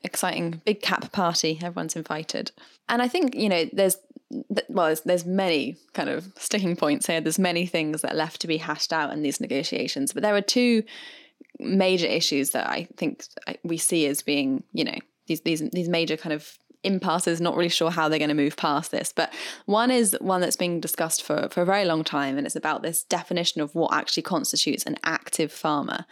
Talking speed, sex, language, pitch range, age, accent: 215 wpm, female, English, 160-200 Hz, 10-29, British